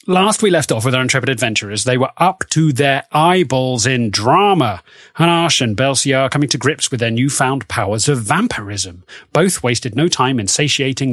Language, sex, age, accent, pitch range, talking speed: English, male, 30-49, British, 125-150 Hz, 190 wpm